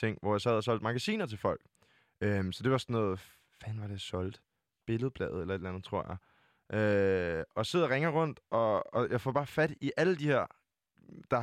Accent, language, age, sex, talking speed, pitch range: native, Danish, 20-39, male, 220 wpm, 100-135 Hz